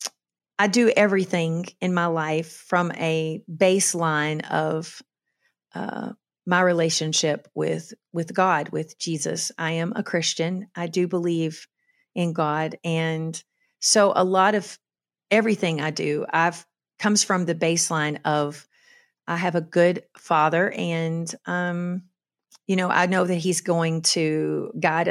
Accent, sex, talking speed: American, female, 135 wpm